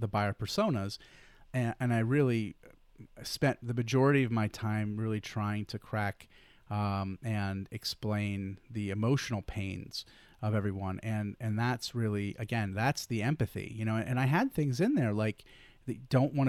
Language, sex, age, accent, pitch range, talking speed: English, male, 30-49, American, 105-125 Hz, 165 wpm